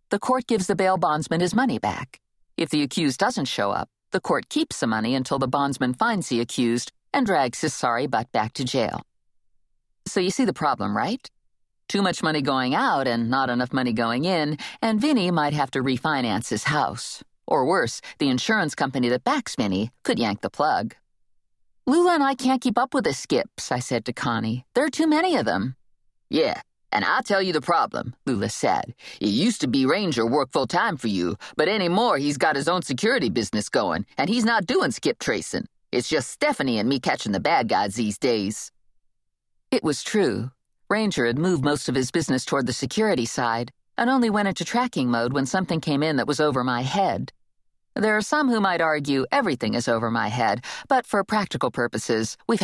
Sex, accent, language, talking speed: female, American, English, 205 wpm